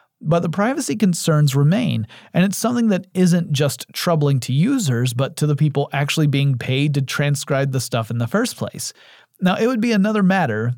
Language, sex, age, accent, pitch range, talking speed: English, male, 30-49, American, 125-165 Hz, 195 wpm